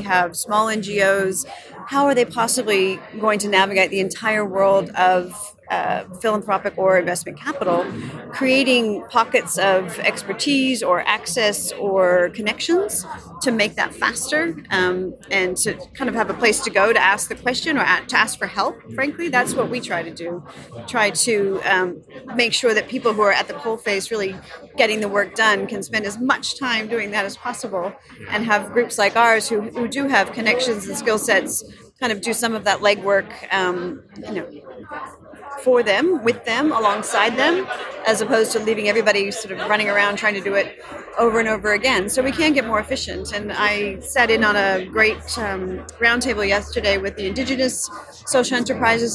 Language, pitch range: English, 195-240 Hz